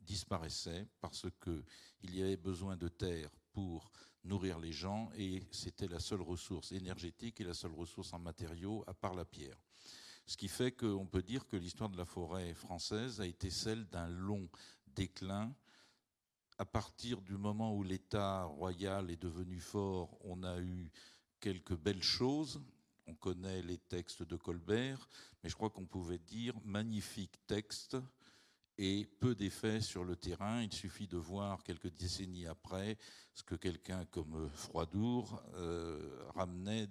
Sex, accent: male, French